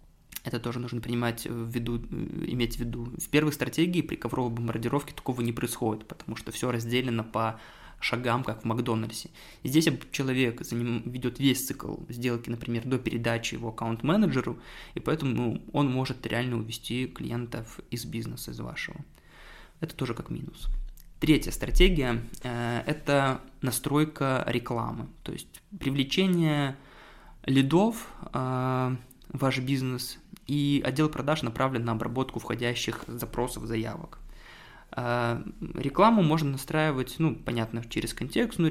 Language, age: Russian, 20-39